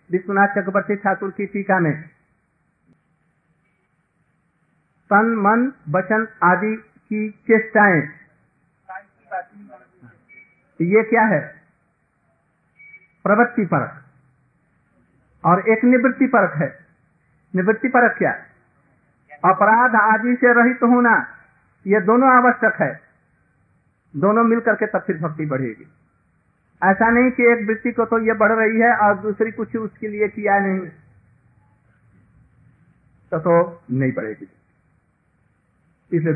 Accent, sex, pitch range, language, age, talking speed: native, male, 165-225 Hz, Hindi, 50-69, 105 wpm